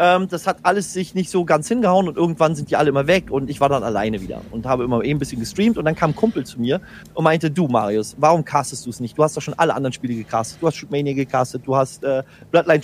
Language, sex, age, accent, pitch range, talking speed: German, male, 30-49, German, 140-180 Hz, 280 wpm